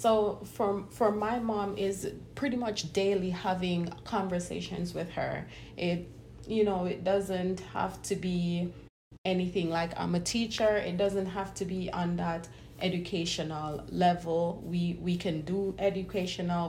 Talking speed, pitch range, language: 140 wpm, 170-190 Hz, English